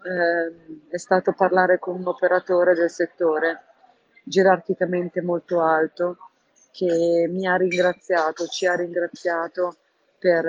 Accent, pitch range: native, 165-190 Hz